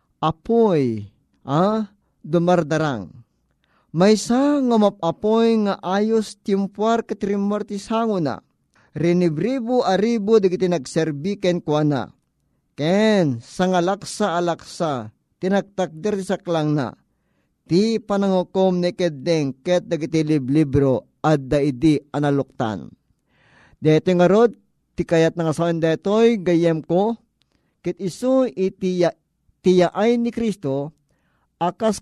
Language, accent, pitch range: Filipino, native, 160-205 Hz